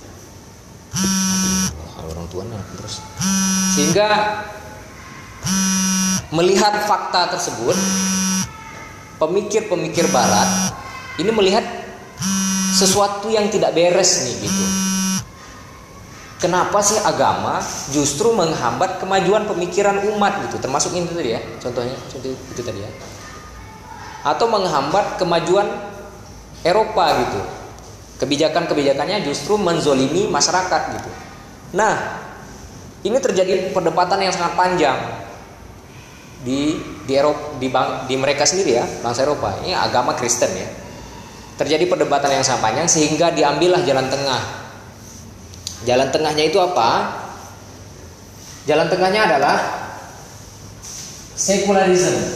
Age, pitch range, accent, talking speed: 20-39, 120-190 Hz, native, 95 wpm